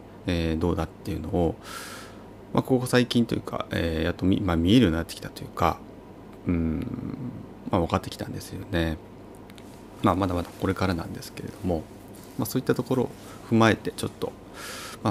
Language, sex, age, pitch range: Japanese, male, 30-49, 85-110 Hz